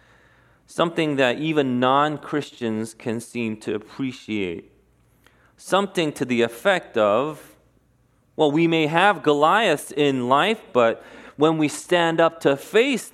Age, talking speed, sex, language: 30-49, 125 wpm, male, English